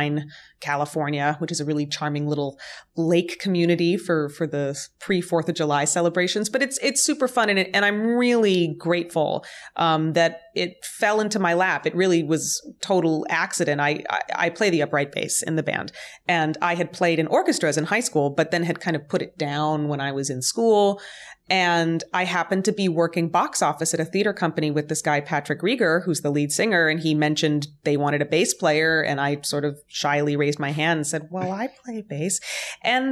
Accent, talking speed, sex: American, 210 wpm, female